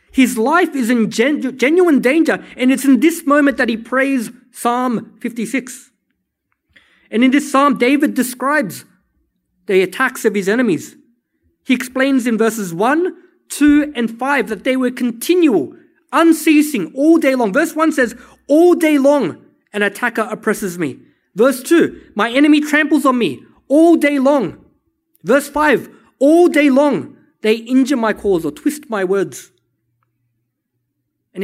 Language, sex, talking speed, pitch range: English, male, 145 wpm, 210-290 Hz